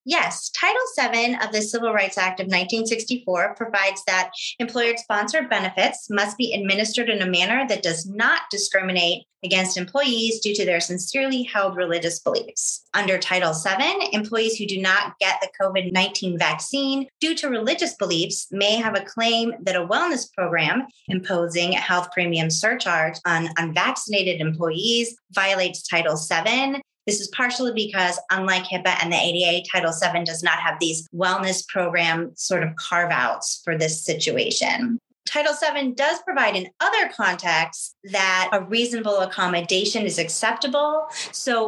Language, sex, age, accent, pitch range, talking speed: English, female, 30-49, American, 175-230 Hz, 150 wpm